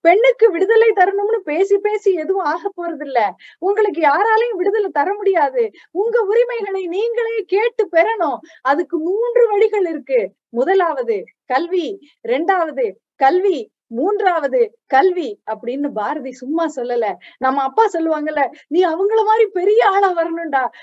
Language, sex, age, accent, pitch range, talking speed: Tamil, female, 20-39, native, 320-430 Hz, 120 wpm